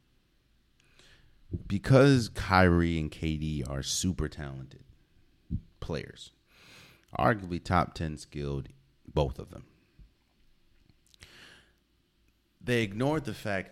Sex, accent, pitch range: male, American, 75-110 Hz